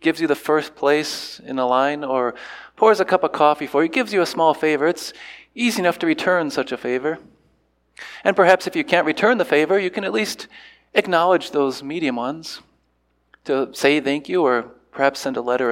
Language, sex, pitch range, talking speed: English, male, 140-175 Hz, 205 wpm